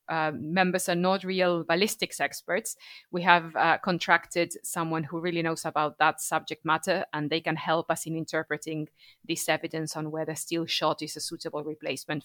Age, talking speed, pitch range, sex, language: 30-49, 175 wpm, 155-175 Hz, female, English